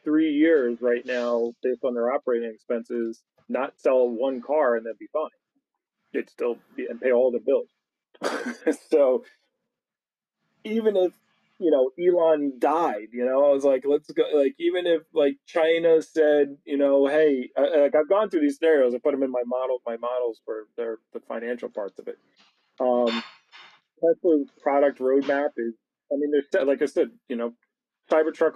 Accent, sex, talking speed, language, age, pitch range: American, male, 175 wpm, English, 30-49, 120-155 Hz